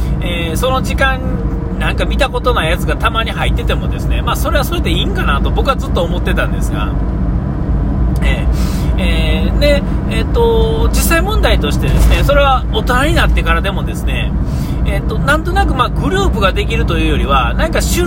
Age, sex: 40-59, male